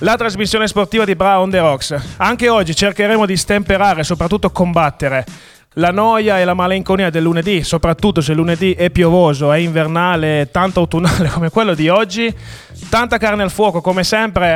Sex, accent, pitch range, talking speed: male, native, 160-205 Hz, 170 wpm